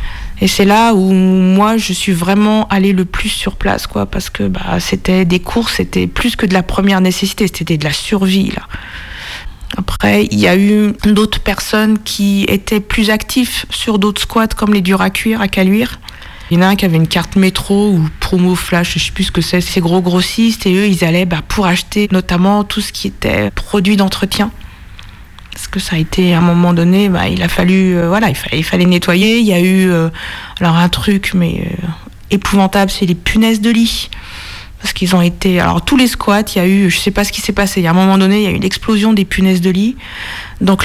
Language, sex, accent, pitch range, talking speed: French, female, French, 175-205 Hz, 235 wpm